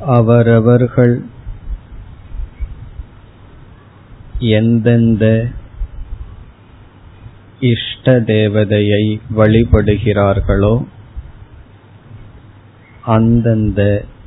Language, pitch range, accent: Tamil, 100-115 Hz, native